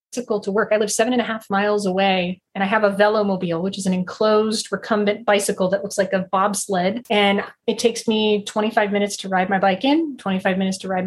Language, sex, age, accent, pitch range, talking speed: English, female, 20-39, American, 190-215 Hz, 220 wpm